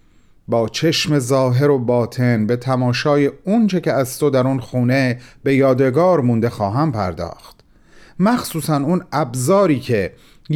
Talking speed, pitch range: 130 wpm, 115-170 Hz